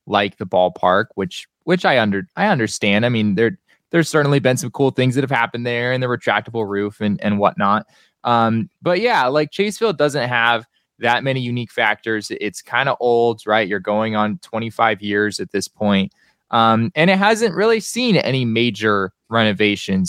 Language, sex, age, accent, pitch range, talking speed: English, male, 20-39, American, 105-135 Hz, 190 wpm